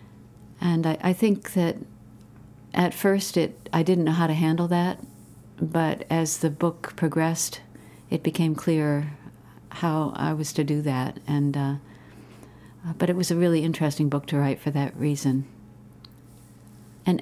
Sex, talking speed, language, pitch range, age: female, 155 wpm, English, 135-165 Hz, 60-79